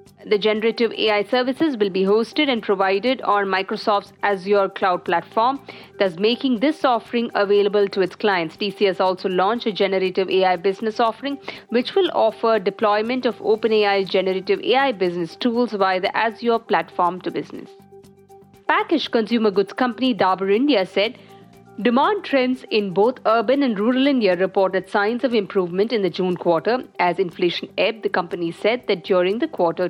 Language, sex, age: English, female, 50-69